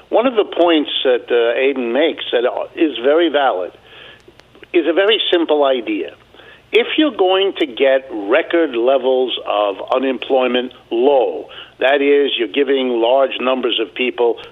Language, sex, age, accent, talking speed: English, male, 60-79, American, 145 wpm